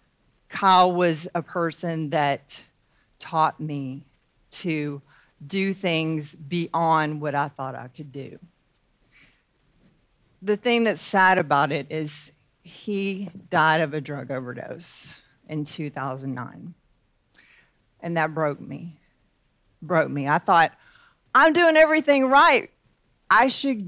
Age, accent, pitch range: 40-59, American, 145-190 Hz